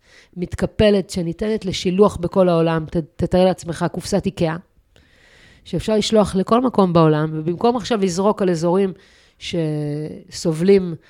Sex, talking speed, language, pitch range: female, 110 wpm, Hebrew, 160-200 Hz